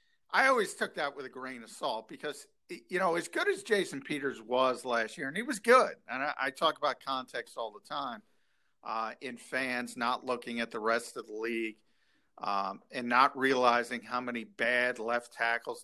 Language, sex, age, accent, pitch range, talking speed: English, male, 50-69, American, 125-195 Hz, 200 wpm